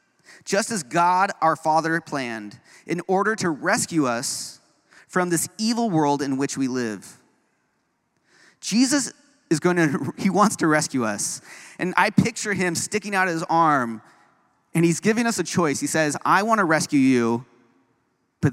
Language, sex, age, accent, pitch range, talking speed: English, male, 30-49, American, 130-175 Hz, 160 wpm